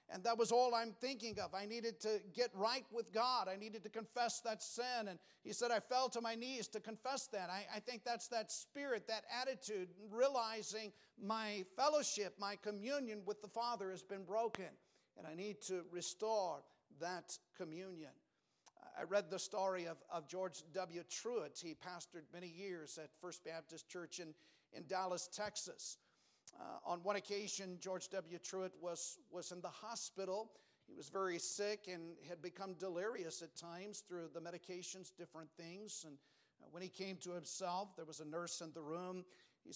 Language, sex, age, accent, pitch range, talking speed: English, male, 50-69, American, 180-220 Hz, 180 wpm